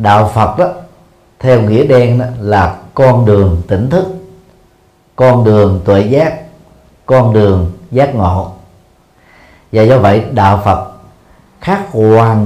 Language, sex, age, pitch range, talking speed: Vietnamese, male, 40-59, 105-145 Hz, 130 wpm